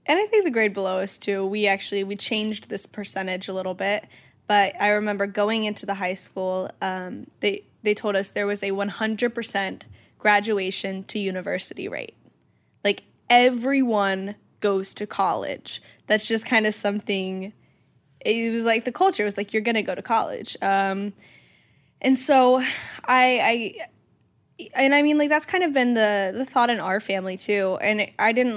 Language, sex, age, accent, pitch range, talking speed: English, female, 10-29, American, 200-245 Hz, 180 wpm